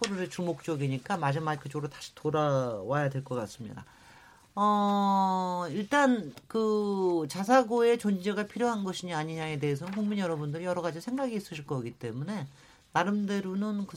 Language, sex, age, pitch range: Korean, male, 40-59, 160-225 Hz